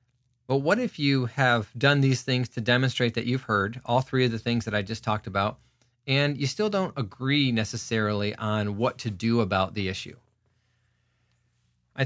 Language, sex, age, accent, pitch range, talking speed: English, male, 40-59, American, 115-135 Hz, 185 wpm